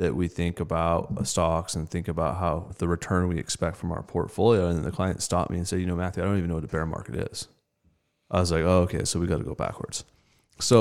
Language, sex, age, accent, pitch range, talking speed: English, male, 20-39, American, 85-105 Hz, 265 wpm